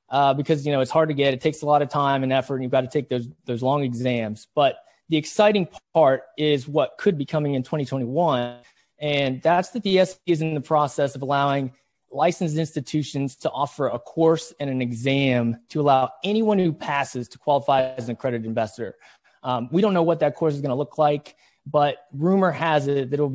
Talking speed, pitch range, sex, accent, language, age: 220 wpm, 125-150 Hz, male, American, English, 20-39